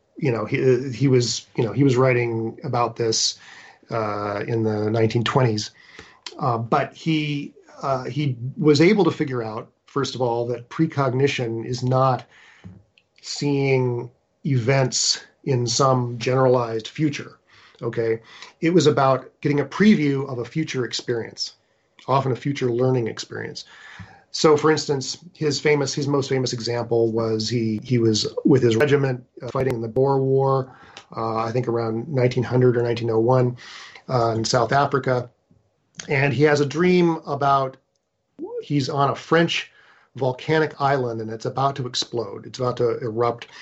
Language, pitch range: English, 115-140 Hz